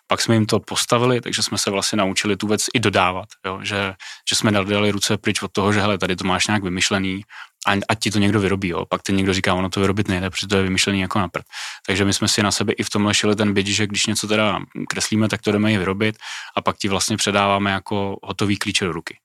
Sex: male